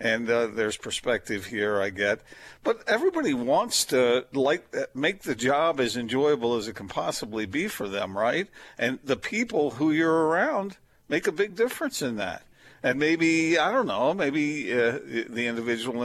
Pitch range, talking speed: 120-200 Hz, 170 wpm